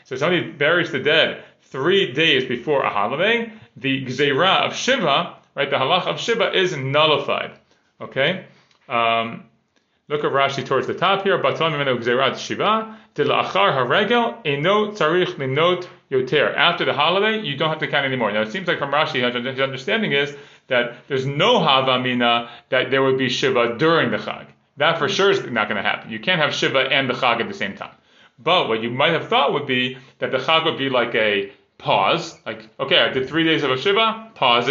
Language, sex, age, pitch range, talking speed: English, male, 30-49, 125-180 Hz, 190 wpm